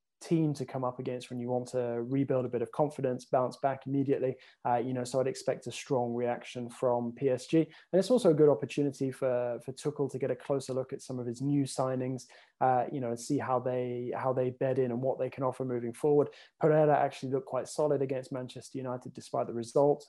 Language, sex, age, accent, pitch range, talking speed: English, male, 20-39, British, 125-140 Hz, 230 wpm